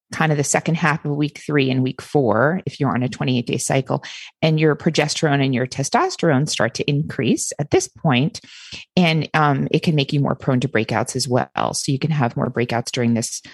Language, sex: English, female